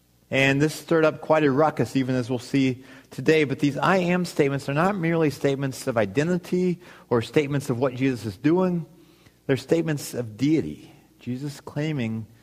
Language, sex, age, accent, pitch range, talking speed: English, male, 30-49, American, 100-135 Hz, 175 wpm